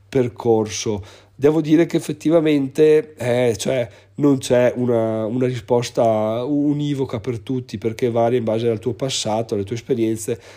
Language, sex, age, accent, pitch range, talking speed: Italian, male, 40-59, native, 105-125 Hz, 140 wpm